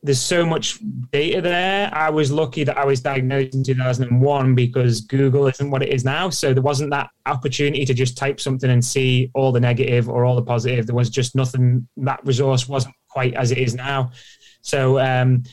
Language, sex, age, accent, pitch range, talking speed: English, male, 20-39, British, 125-145 Hz, 205 wpm